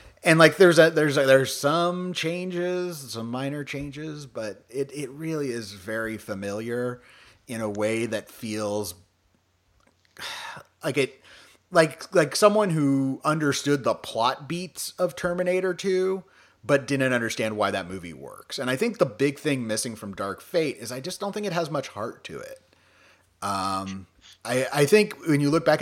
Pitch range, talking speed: 105-150 Hz, 170 wpm